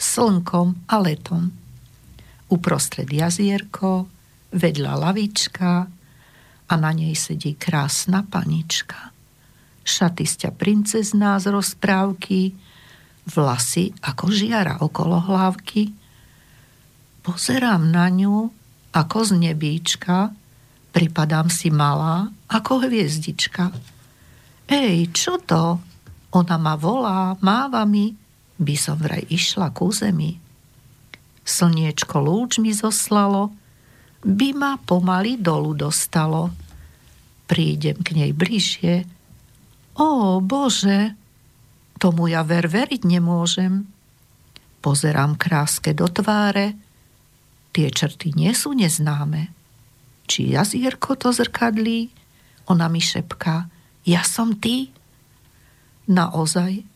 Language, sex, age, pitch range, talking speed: Slovak, female, 50-69, 155-200 Hz, 90 wpm